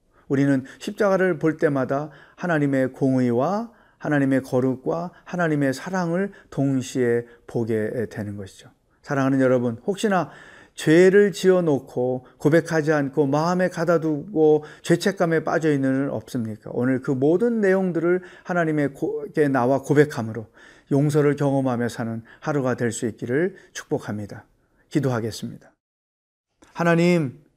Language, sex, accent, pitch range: Korean, male, native, 125-175 Hz